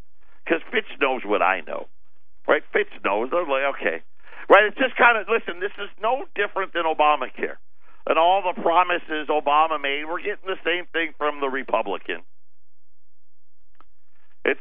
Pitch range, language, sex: 165-225 Hz, English, male